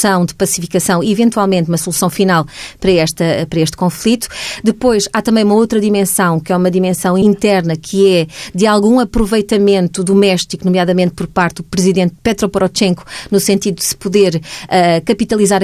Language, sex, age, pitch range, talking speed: Portuguese, female, 20-39, 175-200 Hz, 165 wpm